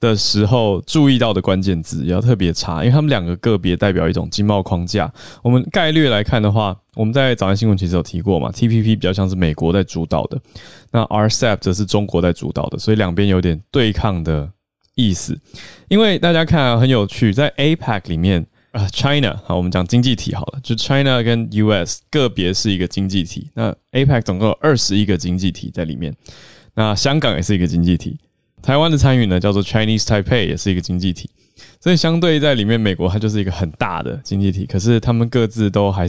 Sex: male